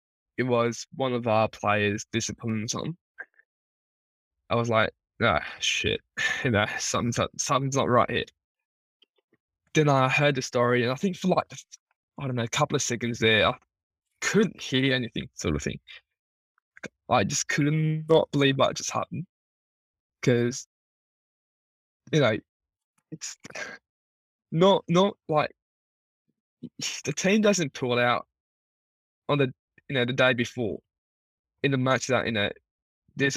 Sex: male